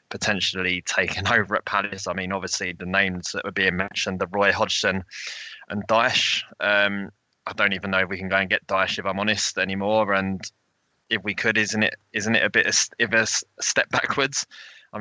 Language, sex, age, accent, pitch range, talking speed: English, male, 20-39, British, 95-105 Hz, 200 wpm